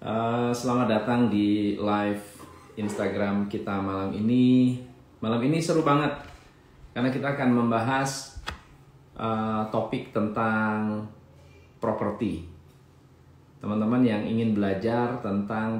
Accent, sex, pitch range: native, male, 105-120 Hz